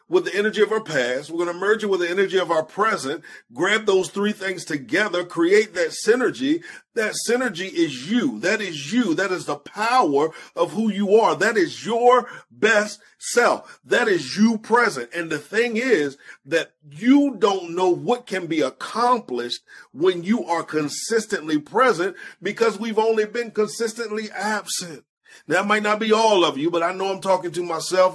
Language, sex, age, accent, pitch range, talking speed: English, male, 40-59, American, 170-240 Hz, 185 wpm